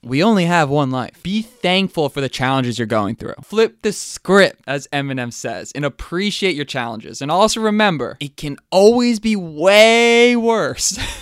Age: 20-39